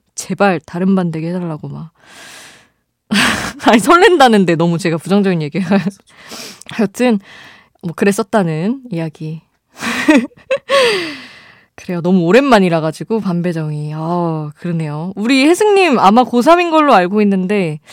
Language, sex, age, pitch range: Korean, female, 20-39, 165-225 Hz